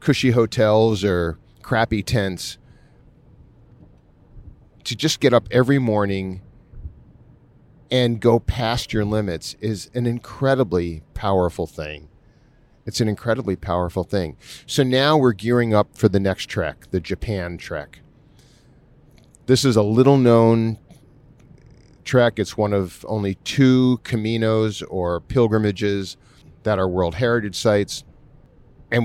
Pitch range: 95-125 Hz